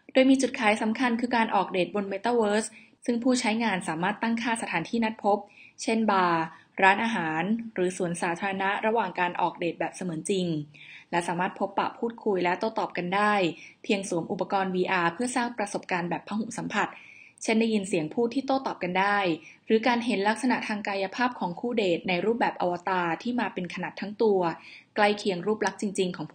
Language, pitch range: Thai, 180-225 Hz